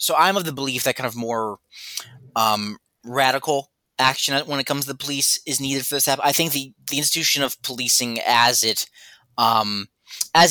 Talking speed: 200 wpm